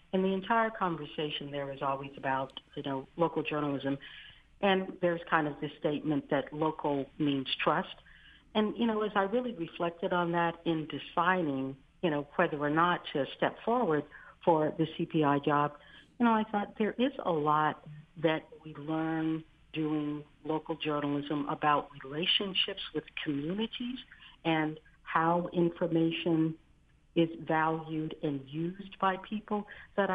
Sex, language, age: female, English, 60-79